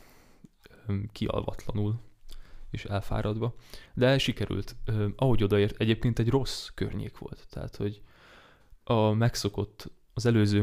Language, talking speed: Hungarian, 100 wpm